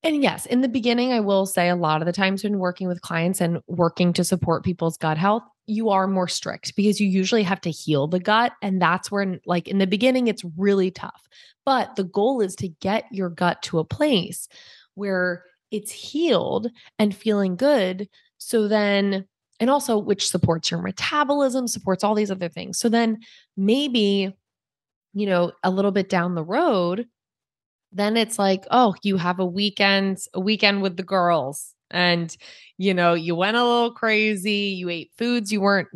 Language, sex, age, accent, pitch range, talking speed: English, female, 20-39, American, 180-225 Hz, 190 wpm